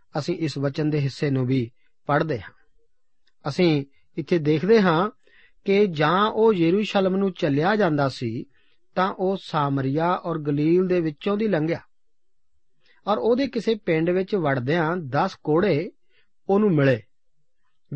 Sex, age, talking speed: male, 40-59, 135 wpm